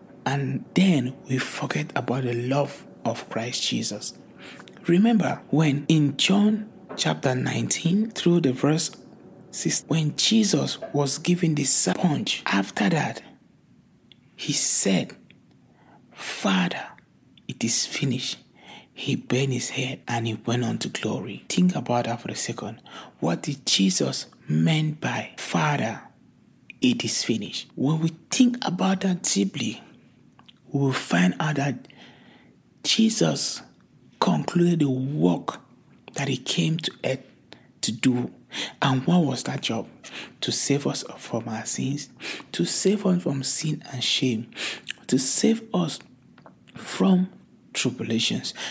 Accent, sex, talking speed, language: Nigerian, male, 125 wpm, English